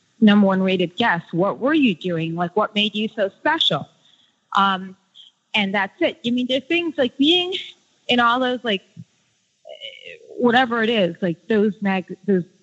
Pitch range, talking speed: 195-275 Hz, 170 wpm